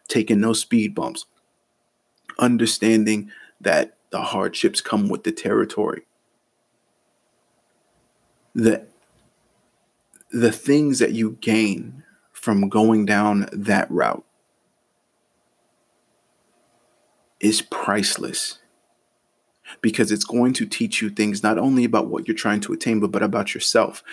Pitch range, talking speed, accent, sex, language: 105-115 Hz, 110 wpm, American, male, English